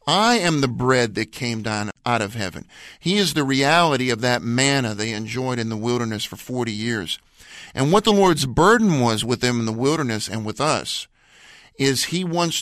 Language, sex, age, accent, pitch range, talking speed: English, male, 50-69, American, 115-150 Hz, 200 wpm